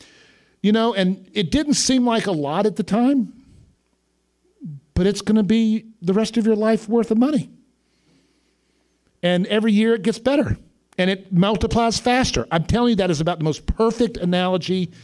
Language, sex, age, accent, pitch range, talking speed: English, male, 50-69, American, 145-220 Hz, 180 wpm